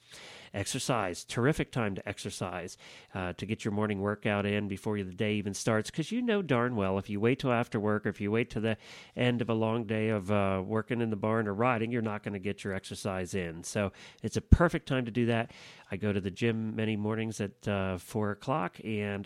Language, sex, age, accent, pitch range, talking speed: English, male, 40-59, American, 100-125 Hz, 235 wpm